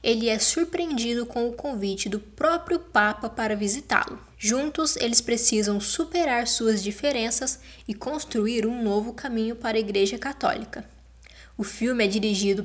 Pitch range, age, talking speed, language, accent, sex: 210-275 Hz, 10-29, 140 wpm, Portuguese, Brazilian, female